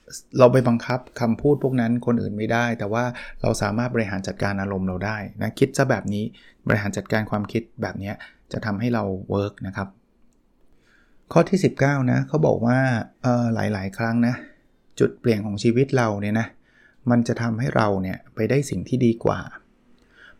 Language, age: Thai, 20-39